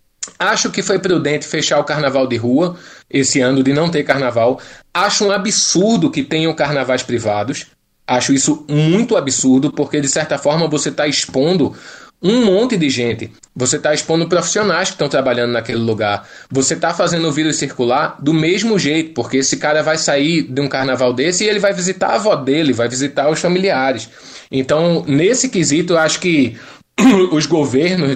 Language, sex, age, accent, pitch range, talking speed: Portuguese, male, 20-39, Brazilian, 135-185 Hz, 175 wpm